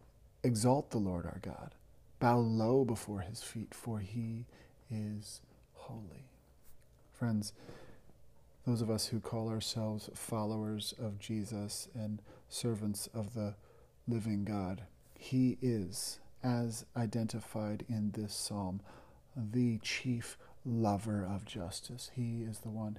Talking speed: 120 wpm